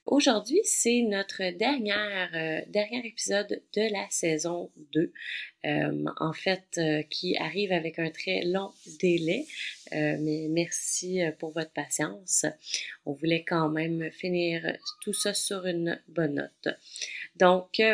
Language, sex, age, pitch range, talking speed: French, female, 30-49, 165-225 Hz, 135 wpm